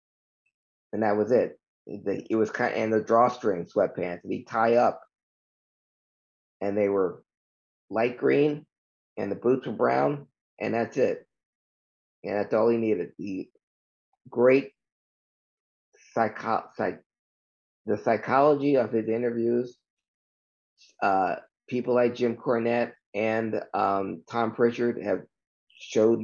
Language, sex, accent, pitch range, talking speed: English, male, American, 100-120 Hz, 125 wpm